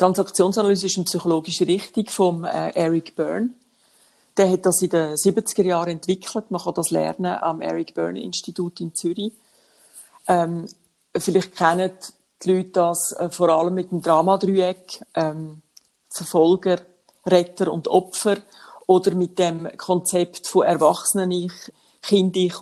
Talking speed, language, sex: 135 wpm, German, female